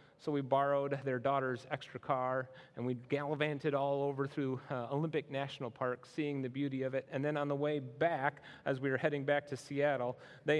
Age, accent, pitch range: 30-49, American, 125-145 Hz